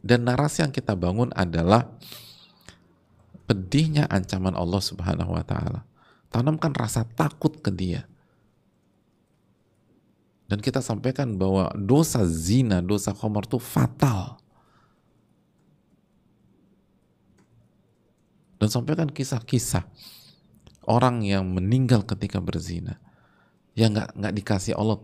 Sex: male